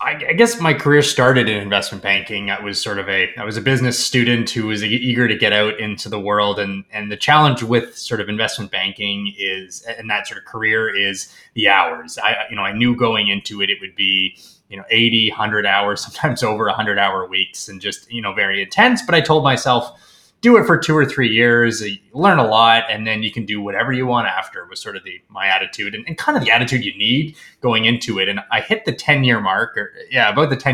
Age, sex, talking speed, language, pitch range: 20-39, male, 240 wpm, English, 105-125 Hz